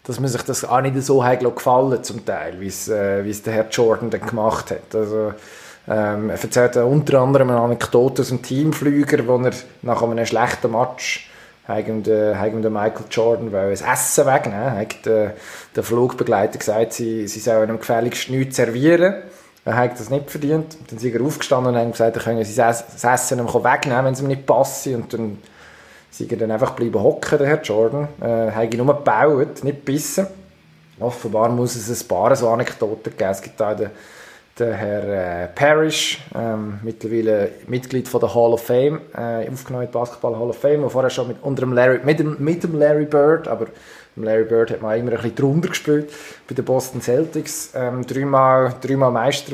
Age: 20-39